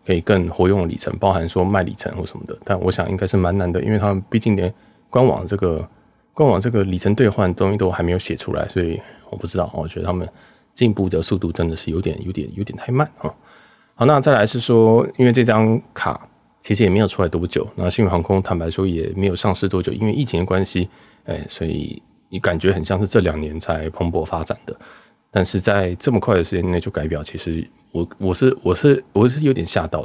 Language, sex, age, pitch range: Chinese, male, 20-39, 90-105 Hz